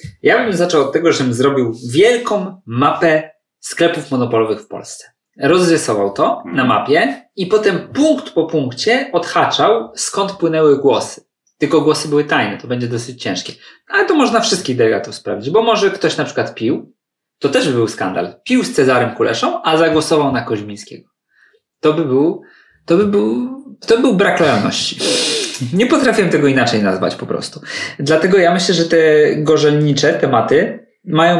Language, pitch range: Polish, 135-180 Hz